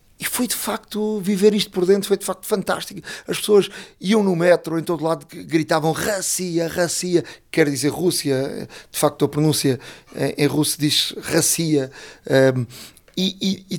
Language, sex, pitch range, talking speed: Portuguese, male, 140-190 Hz, 155 wpm